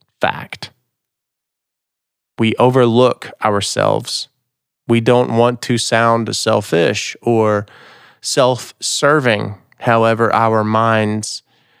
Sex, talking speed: male, 75 wpm